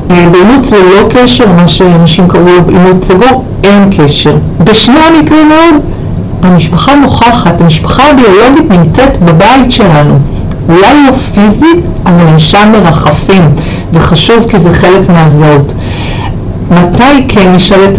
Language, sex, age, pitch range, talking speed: Hebrew, female, 50-69, 155-205 Hz, 115 wpm